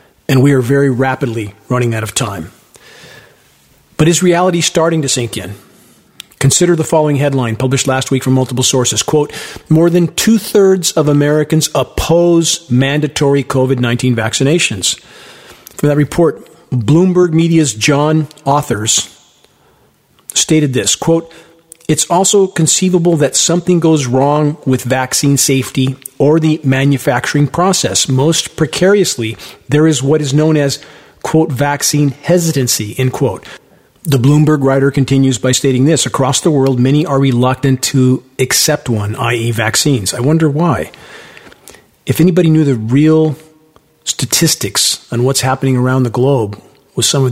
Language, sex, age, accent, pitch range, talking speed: English, male, 40-59, American, 130-155 Hz, 140 wpm